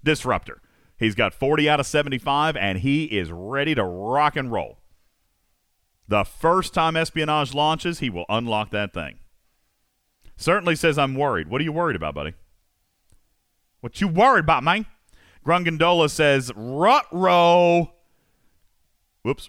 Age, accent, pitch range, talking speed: 40-59, American, 95-150 Hz, 140 wpm